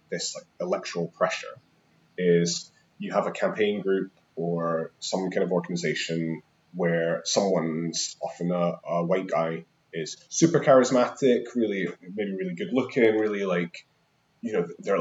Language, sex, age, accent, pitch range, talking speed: English, male, 30-49, British, 85-130 Hz, 140 wpm